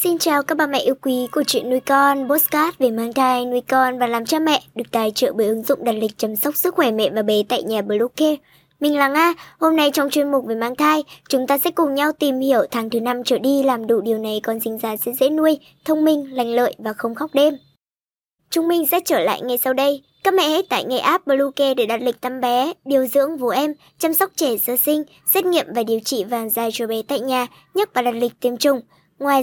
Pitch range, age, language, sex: 245-300 Hz, 20-39, Vietnamese, male